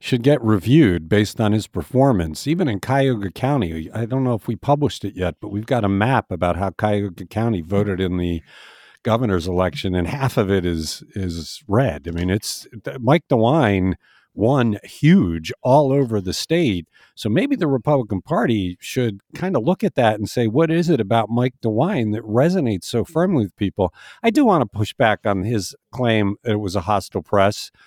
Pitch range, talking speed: 100-140 Hz, 195 wpm